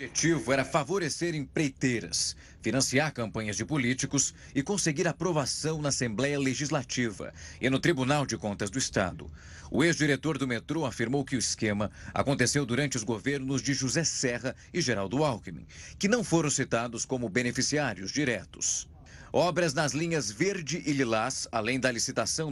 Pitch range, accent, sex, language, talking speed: 115-145 Hz, Brazilian, male, Portuguese, 150 wpm